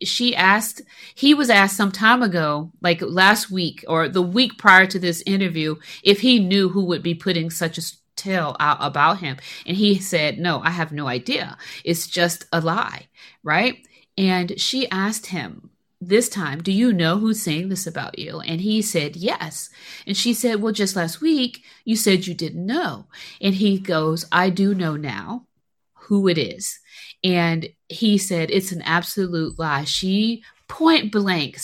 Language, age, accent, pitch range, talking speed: English, 40-59, American, 165-205 Hz, 180 wpm